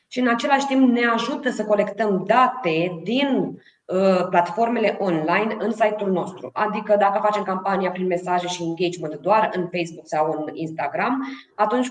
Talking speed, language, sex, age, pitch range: 150 wpm, Romanian, female, 20-39, 190-230 Hz